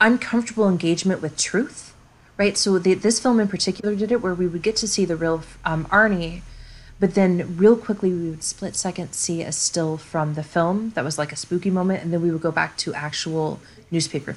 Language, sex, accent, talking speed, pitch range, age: English, female, American, 215 wpm, 155-190 Hz, 30-49